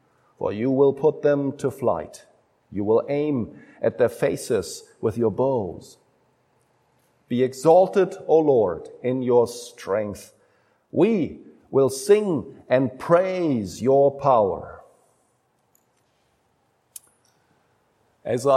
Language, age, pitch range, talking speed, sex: English, 50-69, 135-200 Hz, 100 wpm, male